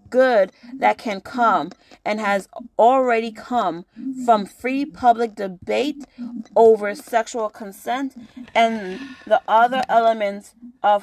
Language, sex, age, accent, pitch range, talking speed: English, female, 30-49, American, 205-255 Hz, 110 wpm